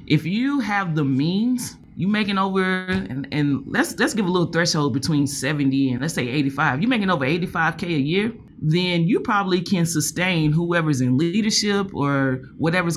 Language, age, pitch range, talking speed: English, 30-49, 150-200 Hz, 175 wpm